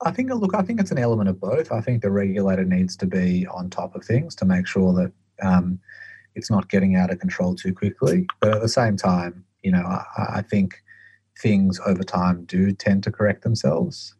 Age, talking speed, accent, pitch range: 30-49, 220 wpm, Australian, 95-105 Hz